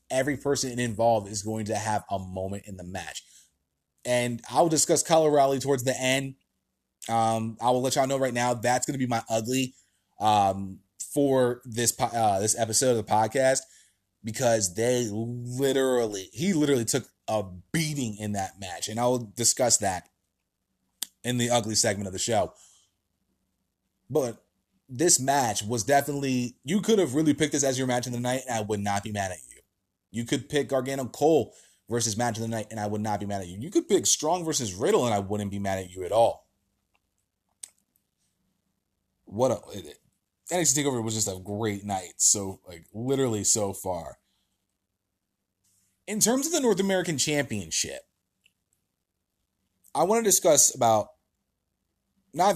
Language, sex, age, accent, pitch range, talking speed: English, male, 20-39, American, 95-135 Hz, 175 wpm